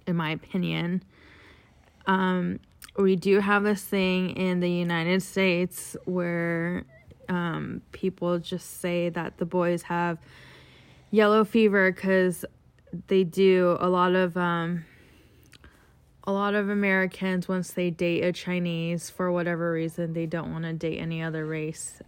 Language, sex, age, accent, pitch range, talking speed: English, female, 20-39, American, 160-185 Hz, 140 wpm